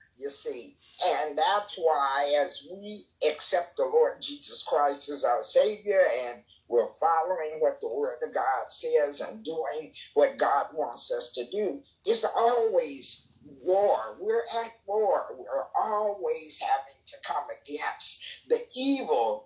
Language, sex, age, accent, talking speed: English, male, 50-69, American, 140 wpm